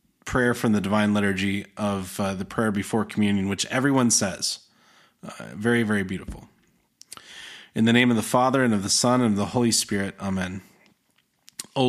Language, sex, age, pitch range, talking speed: English, male, 30-49, 105-130 Hz, 175 wpm